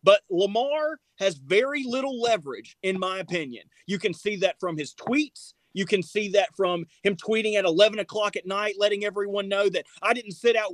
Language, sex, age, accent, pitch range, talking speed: English, male, 30-49, American, 205-330 Hz, 200 wpm